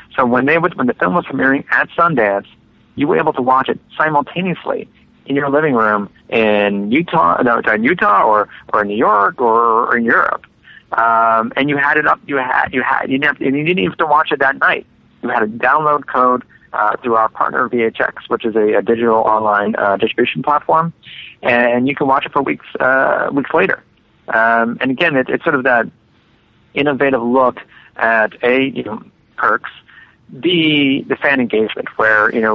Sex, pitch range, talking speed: male, 110-135 Hz, 200 wpm